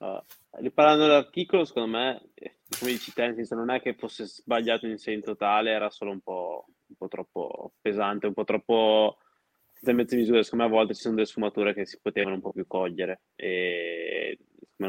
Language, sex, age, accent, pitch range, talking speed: Italian, male, 20-39, native, 100-115 Hz, 185 wpm